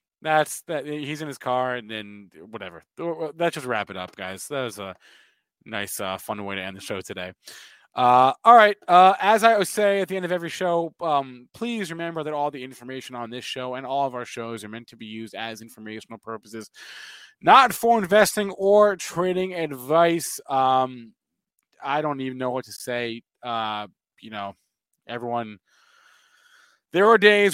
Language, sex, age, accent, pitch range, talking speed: English, male, 20-39, American, 120-160 Hz, 185 wpm